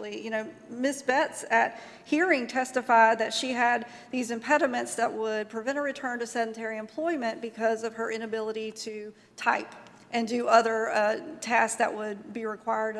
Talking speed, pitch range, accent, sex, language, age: 160 wpm, 220-255 Hz, American, female, English, 40-59